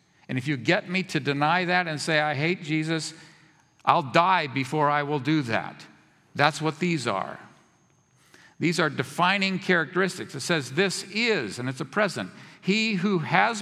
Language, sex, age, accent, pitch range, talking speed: English, male, 50-69, American, 150-210 Hz, 170 wpm